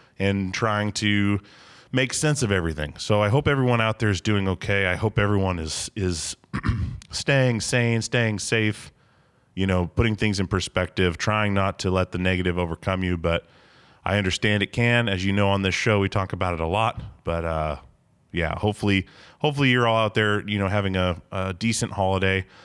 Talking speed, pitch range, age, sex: 190 wpm, 90-115 Hz, 30-49, male